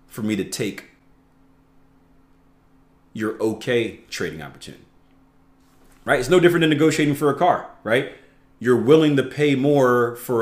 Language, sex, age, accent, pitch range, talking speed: English, male, 30-49, American, 90-145 Hz, 140 wpm